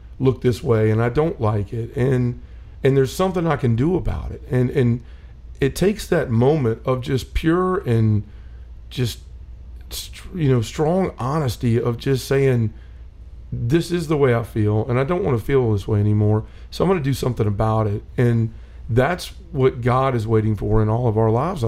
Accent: American